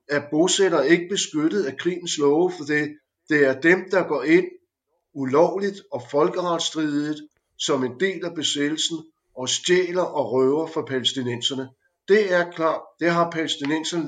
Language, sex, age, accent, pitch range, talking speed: Danish, male, 60-79, native, 125-160 Hz, 150 wpm